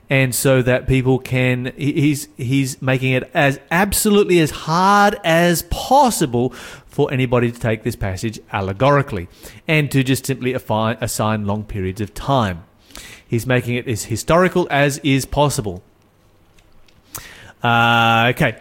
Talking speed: 135 wpm